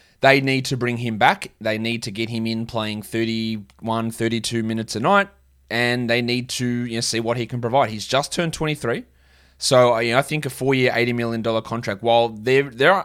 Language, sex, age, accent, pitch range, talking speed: English, male, 20-39, Australian, 105-125 Hz, 210 wpm